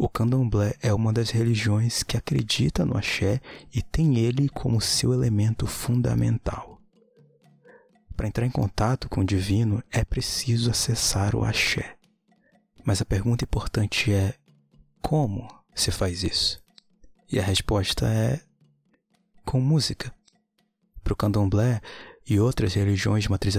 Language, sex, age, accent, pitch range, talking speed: Portuguese, male, 20-39, Brazilian, 100-130 Hz, 130 wpm